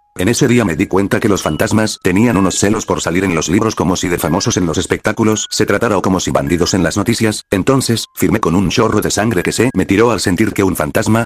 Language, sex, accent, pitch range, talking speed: Spanish, male, Spanish, 95-110 Hz, 260 wpm